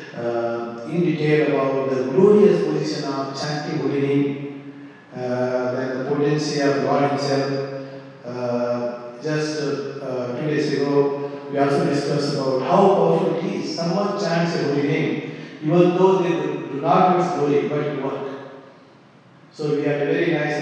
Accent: Indian